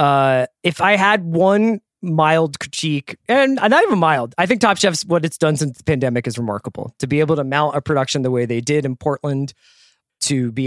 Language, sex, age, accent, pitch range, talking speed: English, male, 20-39, American, 125-160 Hz, 215 wpm